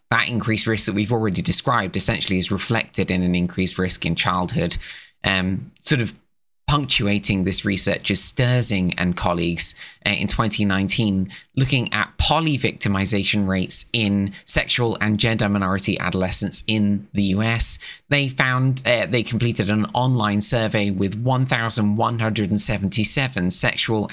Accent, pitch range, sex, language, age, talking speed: British, 100-120 Hz, male, English, 20-39, 130 wpm